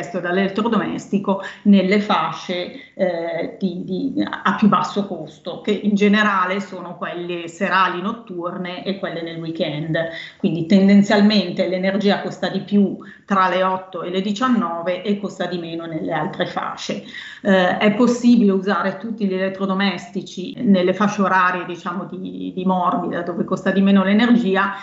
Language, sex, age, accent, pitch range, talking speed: Italian, female, 30-49, native, 180-200 Hz, 145 wpm